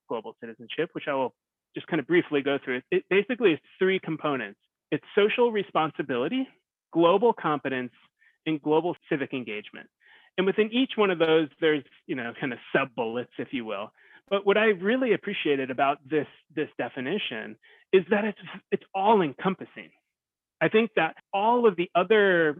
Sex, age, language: male, 30-49, English